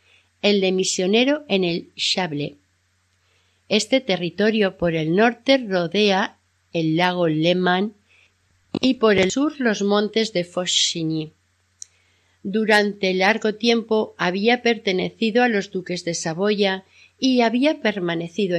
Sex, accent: female, Spanish